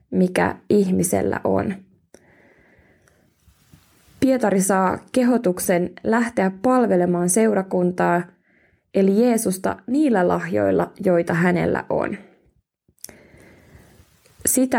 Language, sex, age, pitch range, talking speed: Finnish, female, 20-39, 180-220 Hz, 70 wpm